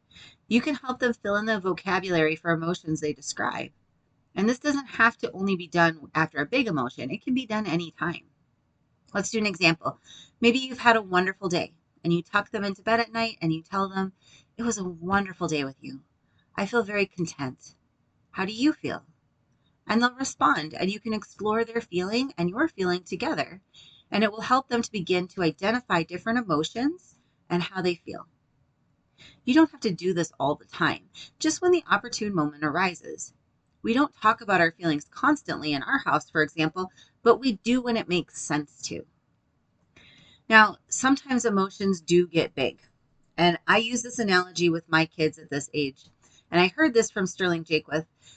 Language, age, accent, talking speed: English, 30-49, American, 190 wpm